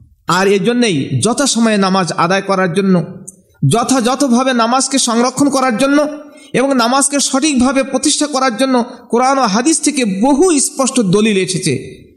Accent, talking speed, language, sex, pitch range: native, 110 wpm, Bengali, male, 195-265 Hz